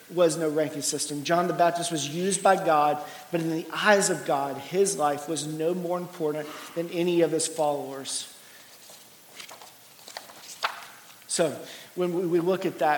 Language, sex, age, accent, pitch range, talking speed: English, male, 40-59, American, 150-175 Hz, 155 wpm